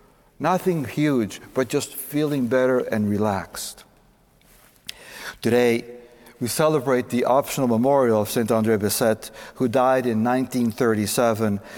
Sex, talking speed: male, 110 wpm